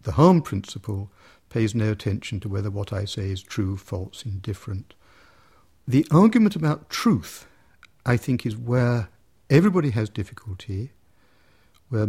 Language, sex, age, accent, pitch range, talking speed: English, male, 60-79, British, 95-120 Hz, 135 wpm